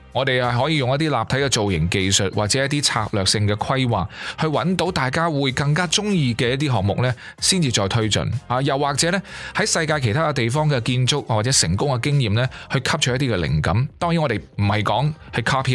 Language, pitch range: Chinese, 100-145 Hz